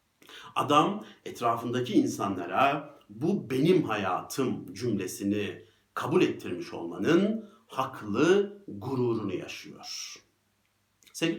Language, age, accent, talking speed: Turkish, 60-79, native, 75 wpm